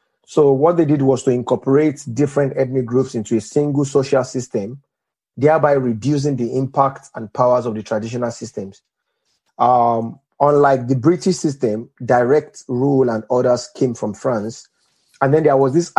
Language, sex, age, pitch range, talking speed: English, male, 30-49, 125-145 Hz, 160 wpm